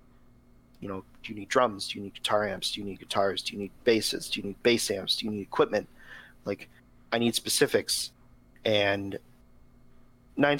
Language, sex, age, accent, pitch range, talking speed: English, male, 40-59, American, 105-125 Hz, 195 wpm